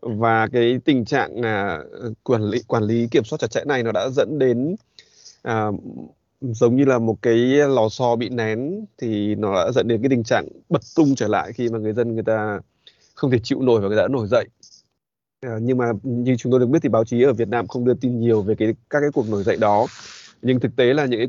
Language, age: Vietnamese, 20-39